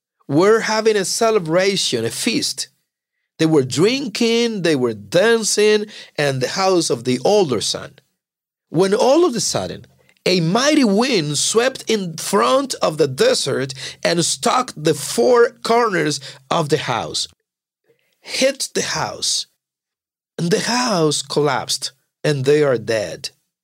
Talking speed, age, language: 130 wpm, 50-69, English